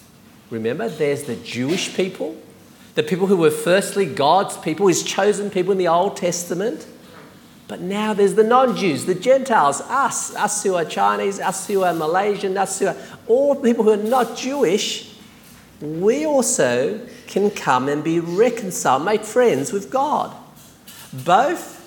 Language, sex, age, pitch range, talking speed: English, male, 50-69, 170-225 Hz, 155 wpm